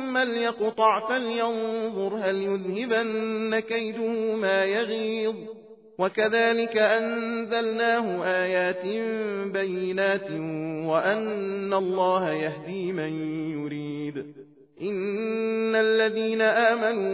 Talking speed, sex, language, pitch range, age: 70 wpm, male, Persian, 195-230 Hz, 40-59